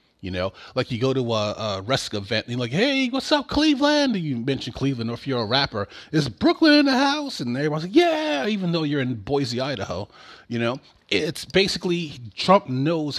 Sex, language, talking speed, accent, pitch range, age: male, English, 210 wpm, American, 115-170 Hz, 30-49